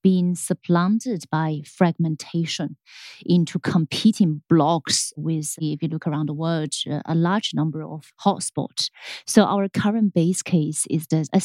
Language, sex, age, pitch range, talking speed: English, female, 30-49, 155-190 Hz, 140 wpm